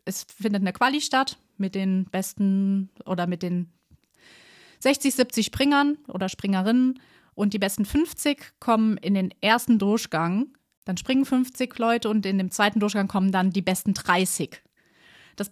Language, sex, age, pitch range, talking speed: German, female, 30-49, 190-225 Hz, 155 wpm